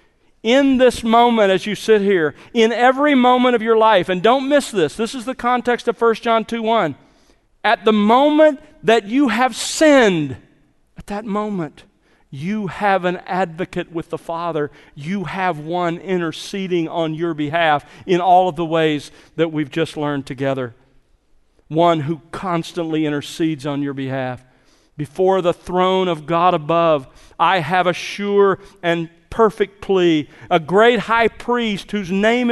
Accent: American